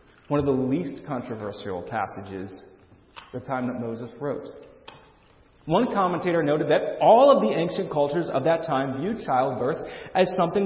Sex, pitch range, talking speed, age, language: male, 135-200 Hz, 160 wpm, 40-59, English